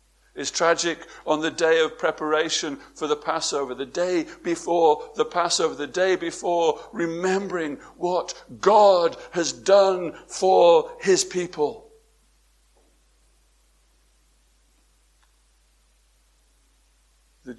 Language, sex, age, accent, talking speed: English, male, 60-79, British, 90 wpm